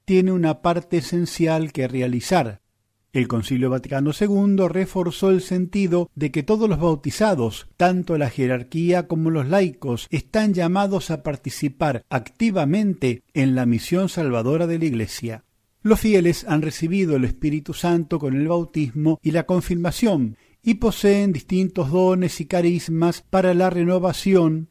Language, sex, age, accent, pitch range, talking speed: Spanish, male, 50-69, Argentinian, 130-185 Hz, 140 wpm